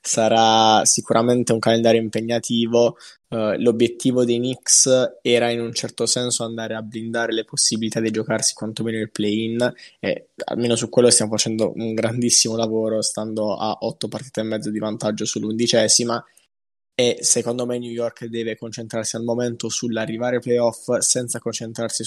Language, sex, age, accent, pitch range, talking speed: Italian, male, 20-39, native, 110-120 Hz, 150 wpm